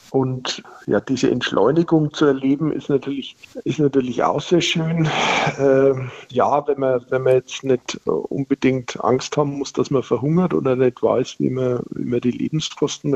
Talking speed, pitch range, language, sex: 170 wpm, 125-145 Hz, German, male